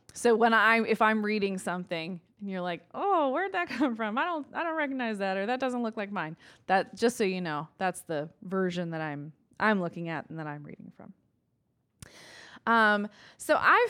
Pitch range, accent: 180-245 Hz, American